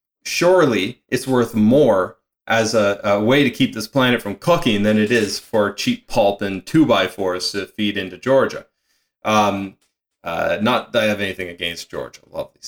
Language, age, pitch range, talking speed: English, 30-49, 100-115 Hz, 180 wpm